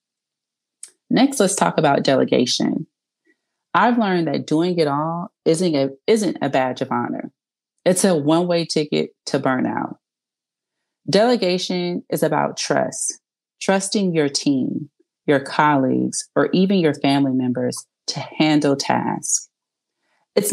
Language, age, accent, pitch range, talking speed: English, 30-49, American, 155-215 Hz, 120 wpm